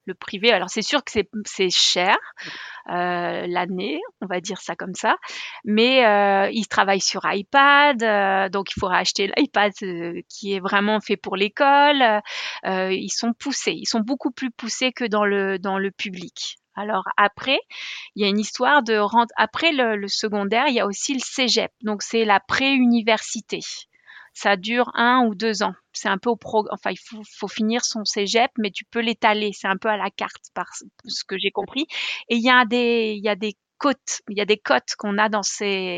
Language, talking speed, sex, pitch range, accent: French, 195 wpm, female, 200-250 Hz, French